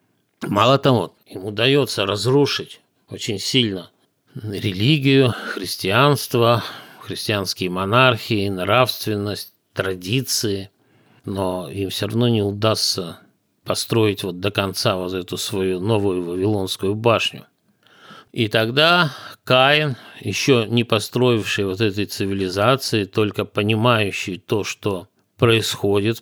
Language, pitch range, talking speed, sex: Russian, 100-125 Hz, 100 wpm, male